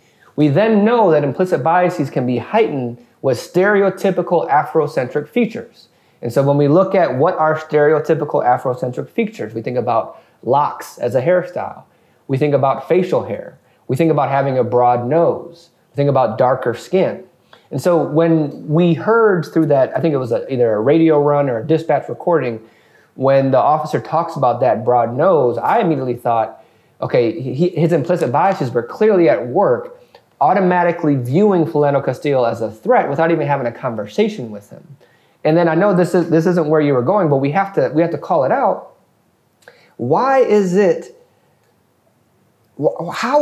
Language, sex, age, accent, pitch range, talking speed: English, male, 30-49, American, 140-185 Hz, 175 wpm